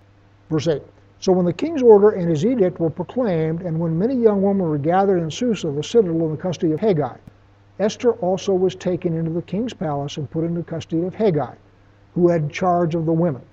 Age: 60-79